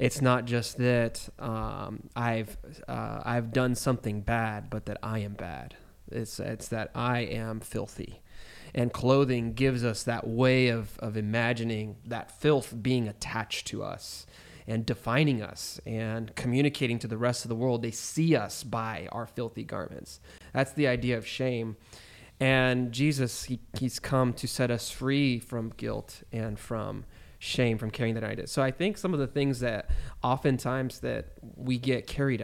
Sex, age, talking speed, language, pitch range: male, 20-39, 170 wpm, English, 115-130 Hz